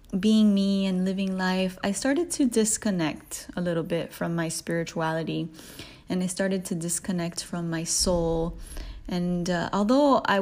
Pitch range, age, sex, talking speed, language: 170-210 Hz, 20-39, female, 155 wpm, English